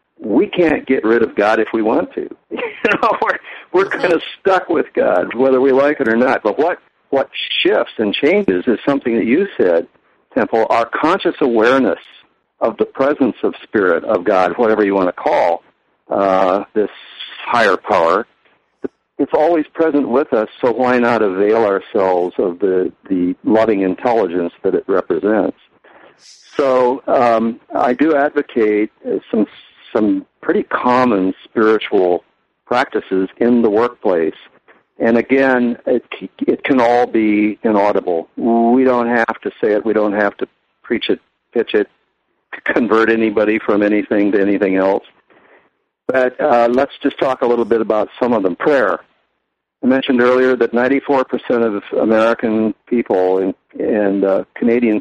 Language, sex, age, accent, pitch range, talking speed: English, male, 60-79, American, 105-130 Hz, 155 wpm